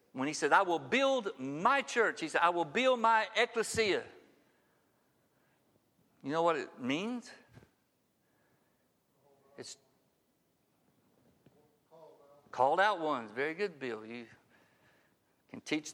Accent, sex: American, male